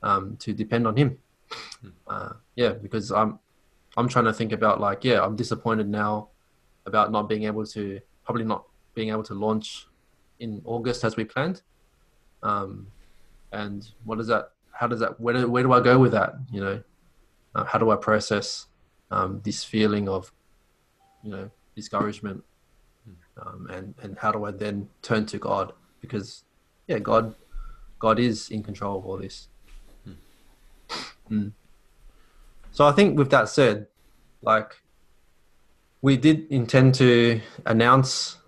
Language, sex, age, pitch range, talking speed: English, male, 20-39, 105-120 Hz, 155 wpm